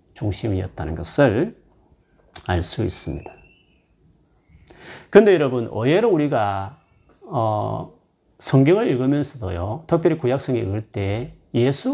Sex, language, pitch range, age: male, Korean, 105-150 Hz, 40-59